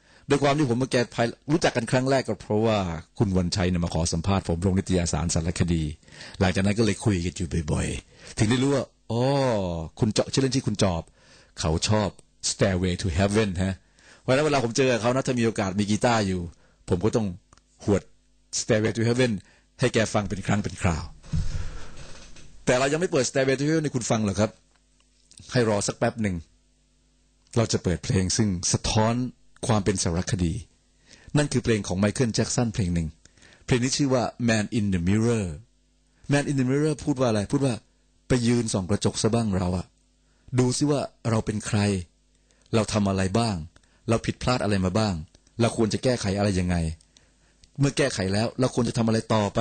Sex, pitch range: male, 85-120 Hz